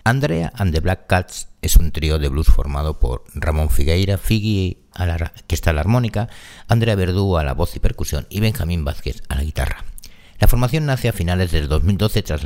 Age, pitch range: 60-79, 75-105 Hz